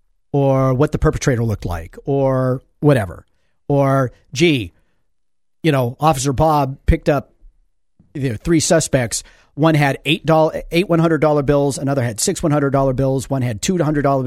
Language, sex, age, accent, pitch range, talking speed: English, male, 40-59, American, 130-165 Hz, 140 wpm